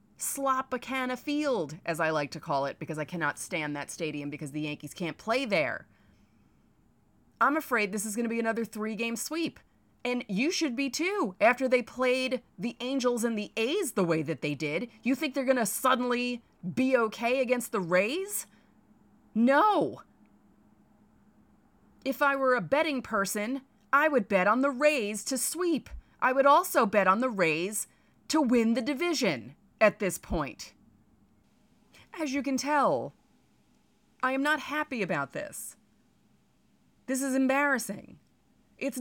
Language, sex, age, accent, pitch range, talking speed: English, female, 30-49, American, 195-270 Hz, 160 wpm